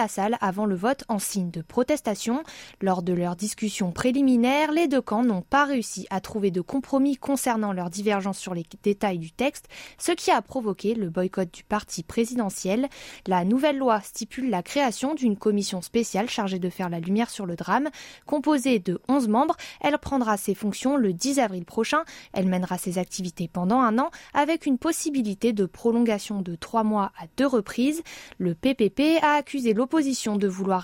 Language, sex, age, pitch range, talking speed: French, female, 20-39, 195-270 Hz, 185 wpm